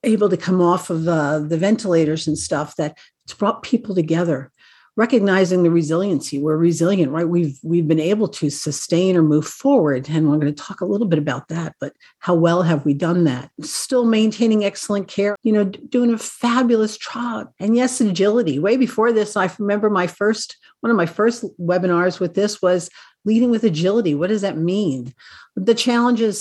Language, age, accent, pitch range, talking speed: English, 50-69, American, 165-220 Hz, 190 wpm